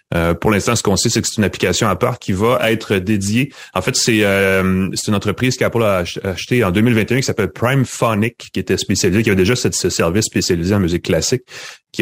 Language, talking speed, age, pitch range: French, 230 wpm, 30-49, 90-115 Hz